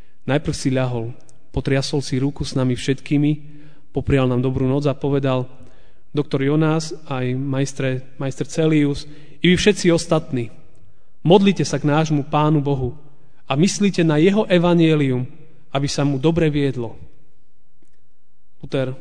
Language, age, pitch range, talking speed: Slovak, 30-49, 135-160 Hz, 135 wpm